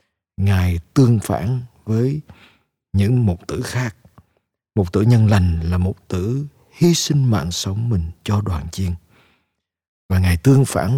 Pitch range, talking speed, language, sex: 90-120 Hz, 150 wpm, Vietnamese, male